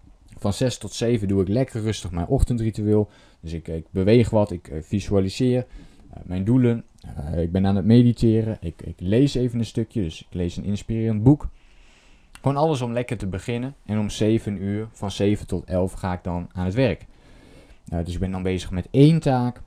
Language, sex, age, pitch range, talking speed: Dutch, male, 20-39, 90-115 Hz, 195 wpm